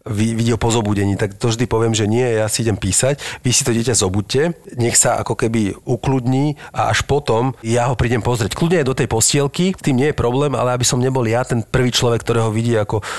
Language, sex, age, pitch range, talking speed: Slovak, male, 40-59, 100-120 Hz, 225 wpm